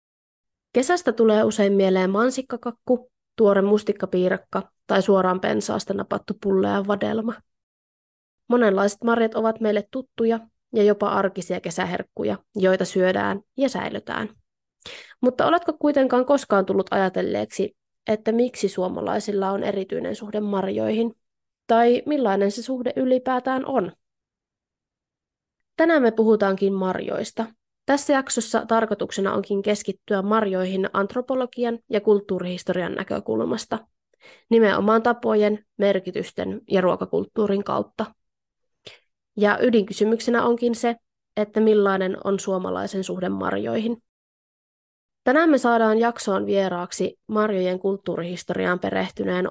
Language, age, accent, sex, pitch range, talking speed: Finnish, 20-39, native, female, 190-235 Hz, 100 wpm